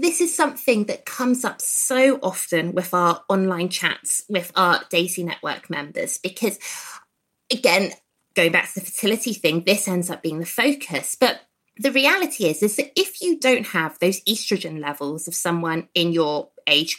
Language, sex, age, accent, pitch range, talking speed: English, female, 20-39, British, 165-235 Hz, 175 wpm